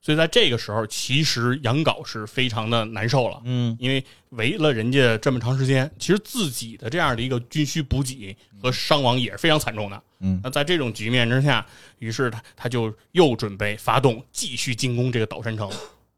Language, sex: Chinese, male